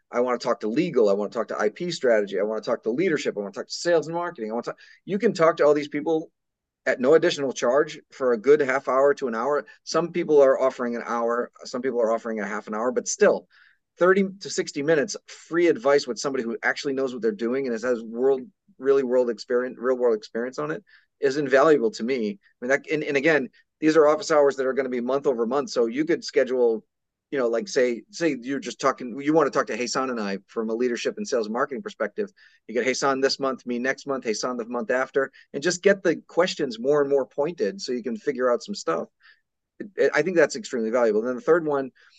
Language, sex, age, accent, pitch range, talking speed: English, male, 30-49, American, 120-165 Hz, 255 wpm